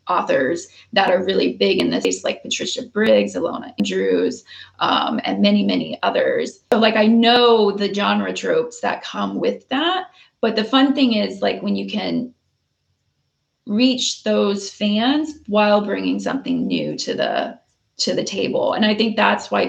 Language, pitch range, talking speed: English, 205-260 Hz, 170 wpm